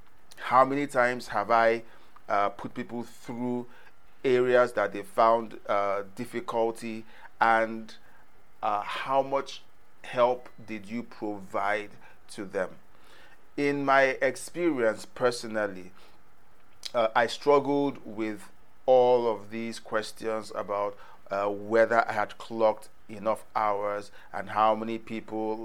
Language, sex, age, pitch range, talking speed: English, male, 40-59, 105-125 Hz, 115 wpm